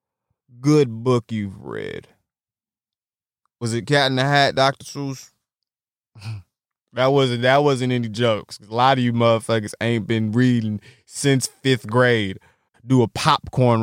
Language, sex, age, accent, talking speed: English, male, 20-39, American, 140 wpm